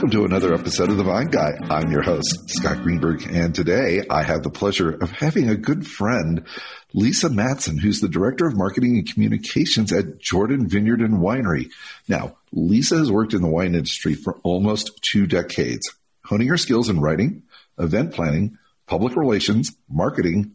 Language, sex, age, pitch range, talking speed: English, male, 50-69, 85-120 Hz, 175 wpm